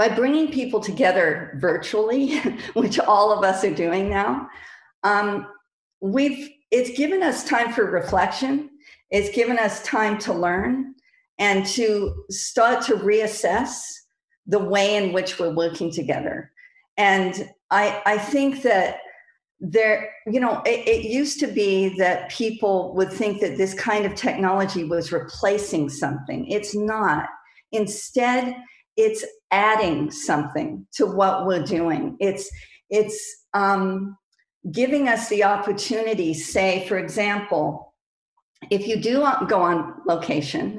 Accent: American